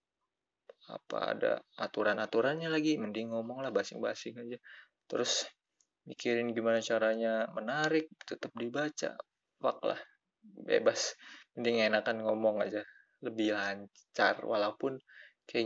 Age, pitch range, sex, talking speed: 20-39, 110-130 Hz, male, 105 wpm